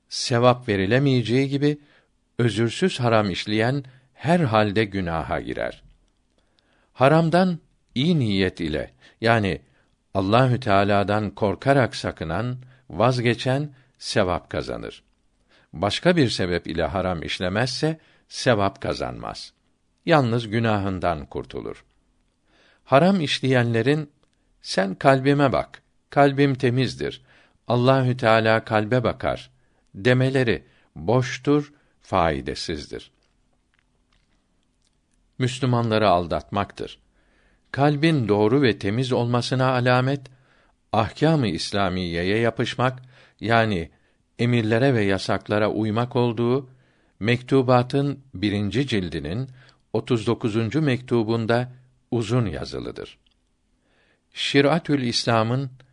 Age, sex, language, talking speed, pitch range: 60-79, male, Turkish, 75 wpm, 105-130 Hz